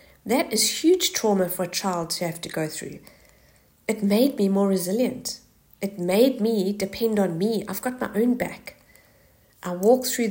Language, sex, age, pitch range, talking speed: English, female, 50-69, 175-225 Hz, 180 wpm